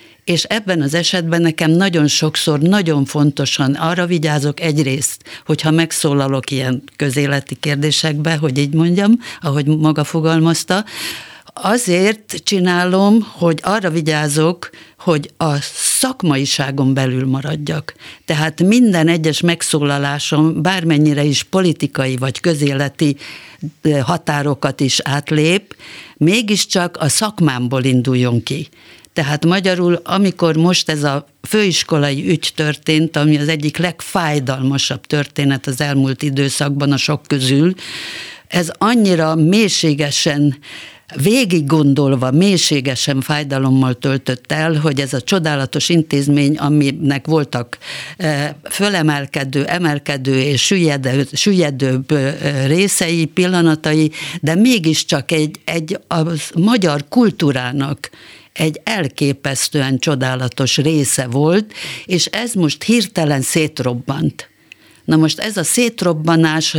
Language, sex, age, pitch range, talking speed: Hungarian, female, 50-69, 140-170 Hz, 100 wpm